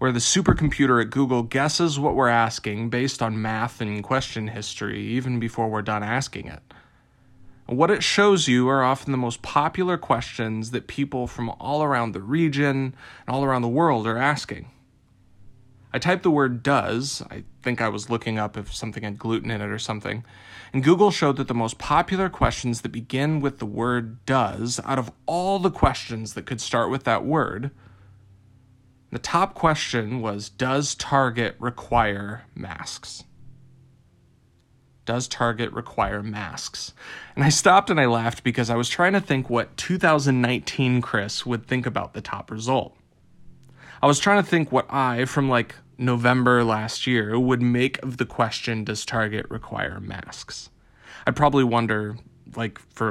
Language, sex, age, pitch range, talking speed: English, male, 30-49, 110-135 Hz, 165 wpm